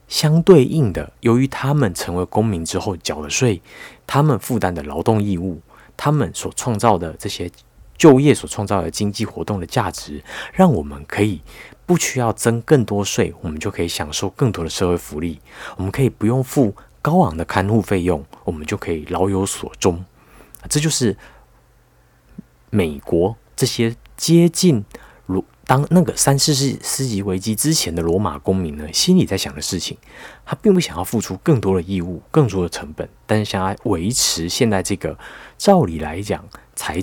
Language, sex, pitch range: Chinese, male, 85-115 Hz